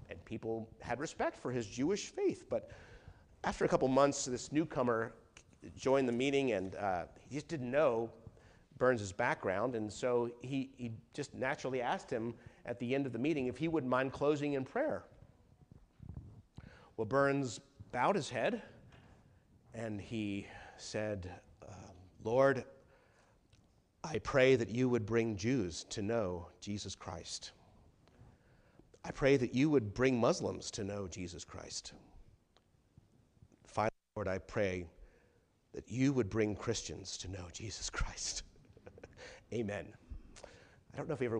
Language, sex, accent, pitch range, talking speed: English, male, American, 100-130 Hz, 145 wpm